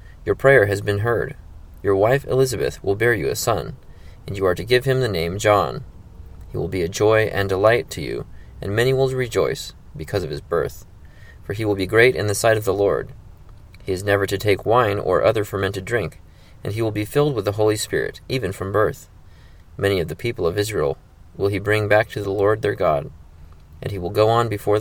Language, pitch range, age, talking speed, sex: English, 85-120 Hz, 20-39, 225 wpm, male